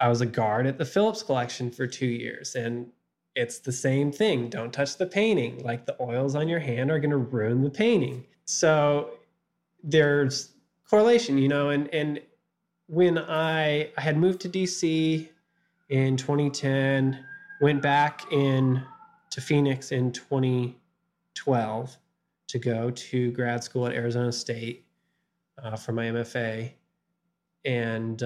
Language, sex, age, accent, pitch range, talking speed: English, male, 20-39, American, 125-170 Hz, 145 wpm